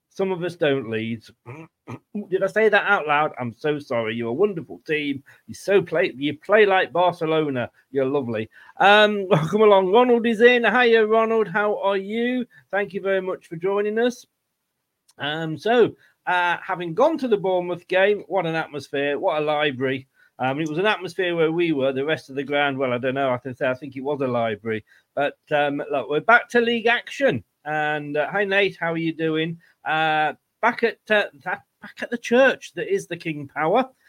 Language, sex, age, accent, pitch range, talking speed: English, male, 40-59, British, 145-205 Hz, 205 wpm